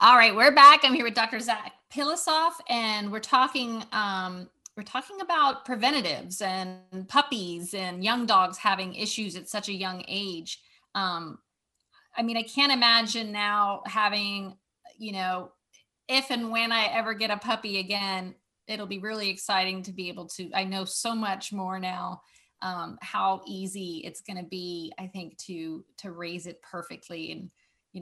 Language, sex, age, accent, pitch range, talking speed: English, female, 30-49, American, 190-230 Hz, 170 wpm